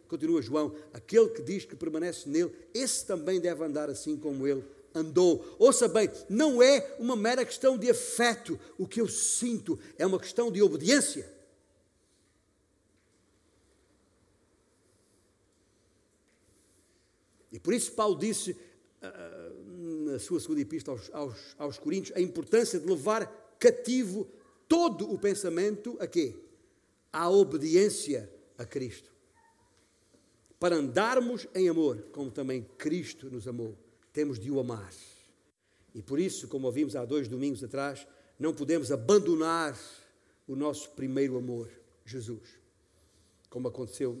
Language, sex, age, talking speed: Portuguese, male, 50-69, 125 wpm